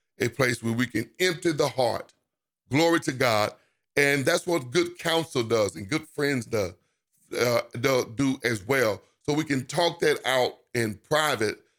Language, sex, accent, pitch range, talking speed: English, male, American, 120-150 Hz, 170 wpm